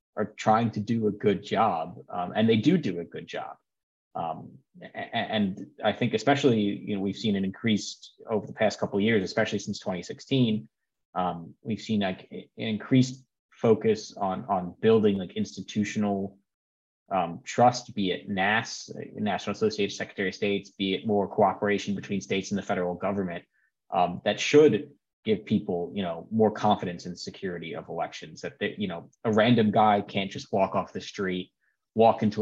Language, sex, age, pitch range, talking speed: English, male, 20-39, 95-115 Hz, 175 wpm